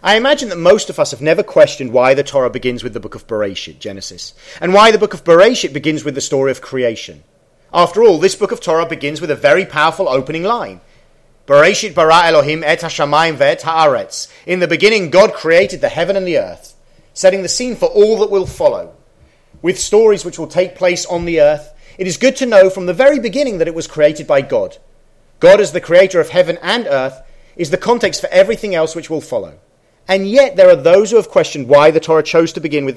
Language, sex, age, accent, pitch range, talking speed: English, male, 40-59, British, 150-195 Hz, 230 wpm